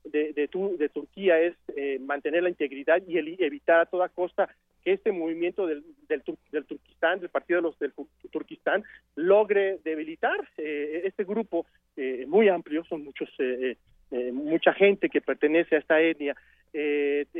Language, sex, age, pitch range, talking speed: Spanish, male, 40-59, 150-185 Hz, 170 wpm